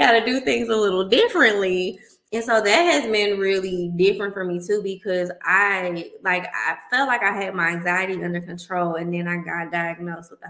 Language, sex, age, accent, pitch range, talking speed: English, female, 20-39, American, 170-205 Hz, 205 wpm